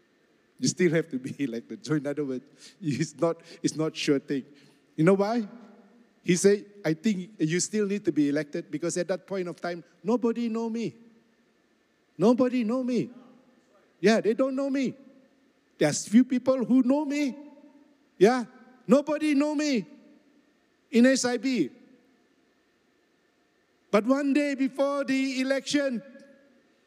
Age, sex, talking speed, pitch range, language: 50-69, male, 140 wpm, 220-275 Hz, English